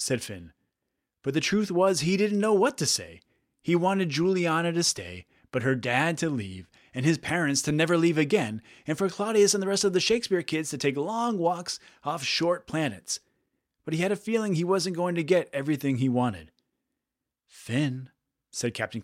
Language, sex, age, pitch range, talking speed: English, male, 30-49, 125-180 Hz, 195 wpm